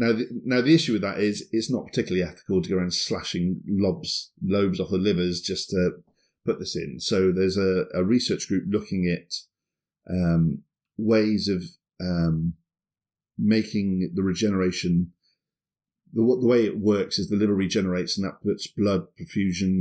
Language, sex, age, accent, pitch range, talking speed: English, male, 40-59, British, 90-105 Hz, 160 wpm